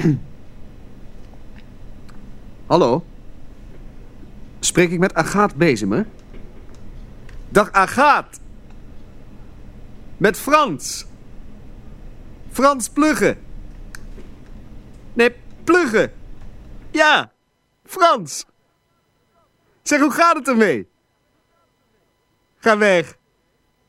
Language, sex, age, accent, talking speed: Dutch, male, 50-69, Dutch, 60 wpm